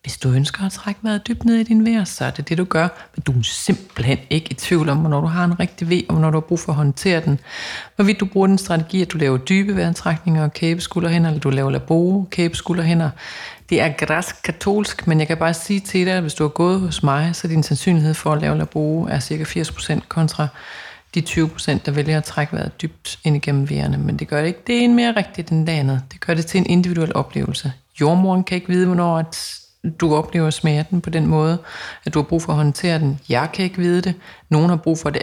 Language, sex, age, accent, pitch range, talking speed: Danish, female, 30-49, native, 150-180 Hz, 250 wpm